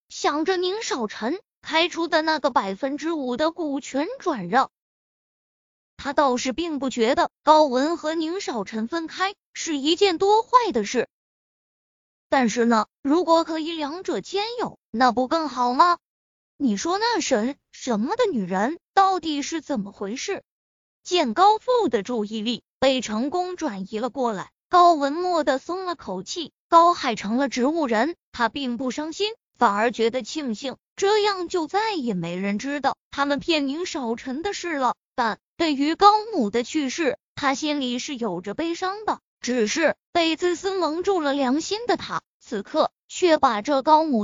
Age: 20-39